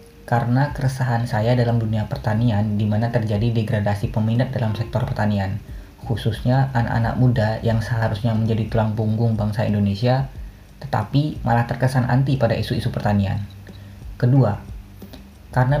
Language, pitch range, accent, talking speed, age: Indonesian, 105-125 Hz, native, 125 wpm, 20-39